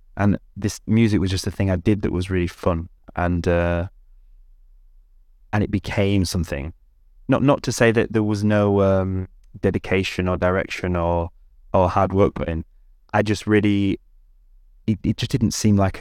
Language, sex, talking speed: English, male, 170 wpm